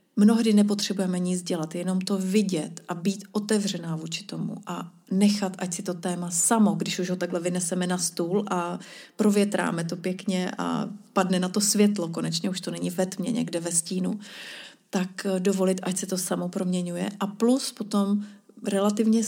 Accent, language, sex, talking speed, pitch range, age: native, Czech, female, 170 wpm, 180-205 Hz, 30-49